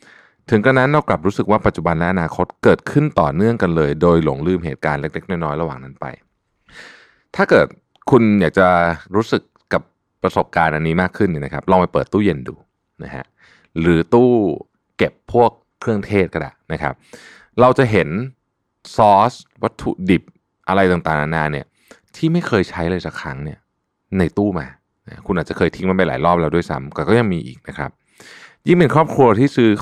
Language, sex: Thai, male